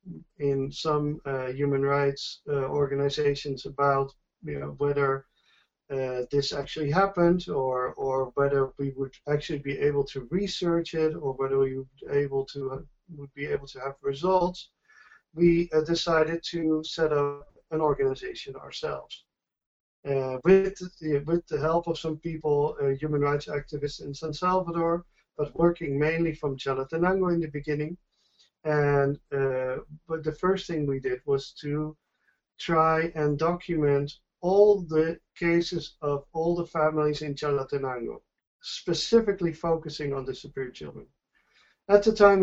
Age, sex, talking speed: 50-69, male, 135 wpm